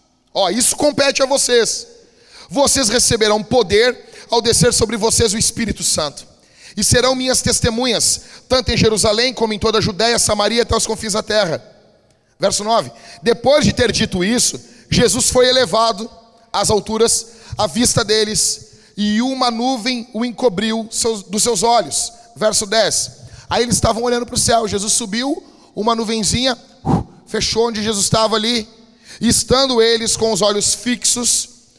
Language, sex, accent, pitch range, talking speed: Portuguese, male, Brazilian, 200-235 Hz, 155 wpm